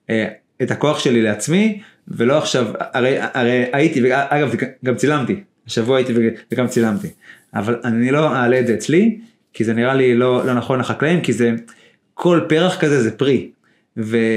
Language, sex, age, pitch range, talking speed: Hebrew, male, 20-39, 115-145 Hz, 160 wpm